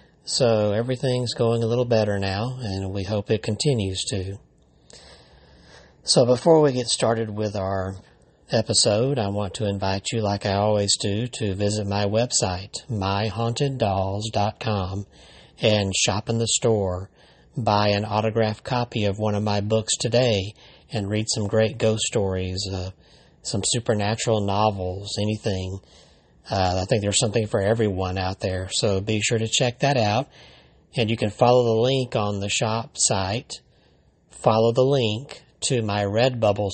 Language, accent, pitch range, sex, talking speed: English, American, 100-120 Hz, male, 150 wpm